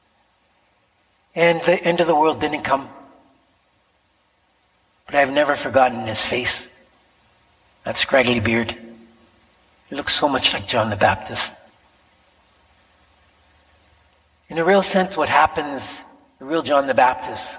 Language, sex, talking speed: English, male, 125 wpm